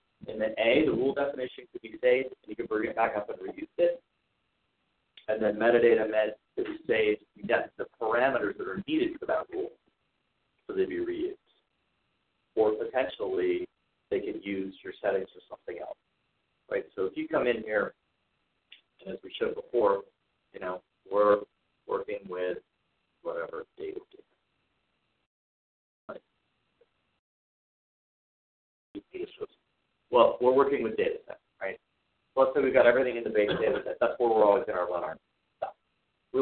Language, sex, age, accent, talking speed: English, male, 50-69, American, 155 wpm